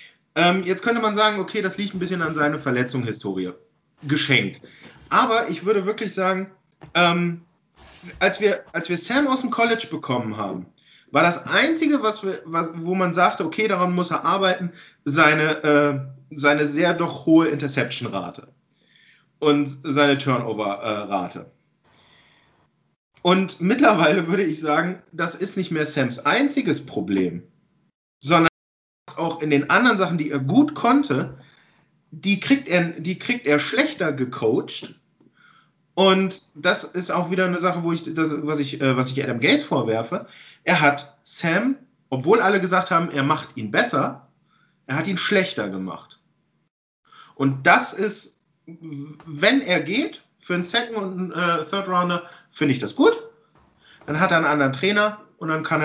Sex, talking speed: male, 150 wpm